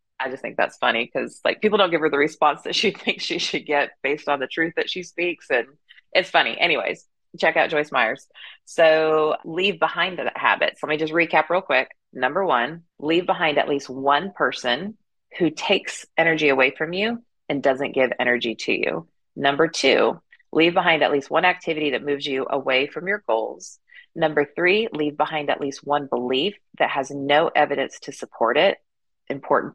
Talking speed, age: 195 wpm, 30-49